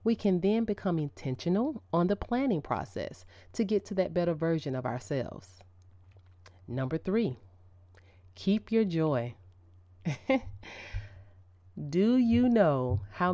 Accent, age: American, 30-49